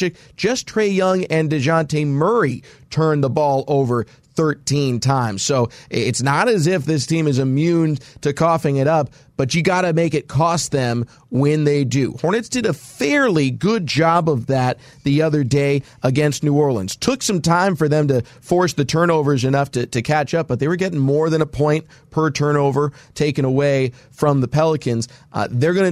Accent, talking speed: American, 190 wpm